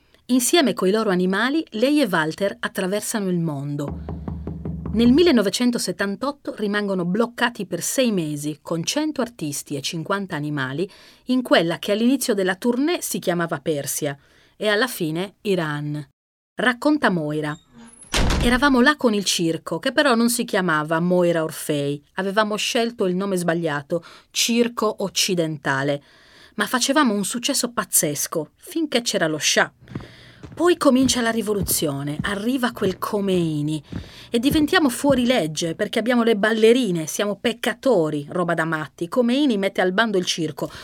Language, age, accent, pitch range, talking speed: Italian, 30-49, native, 160-235 Hz, 135 wpm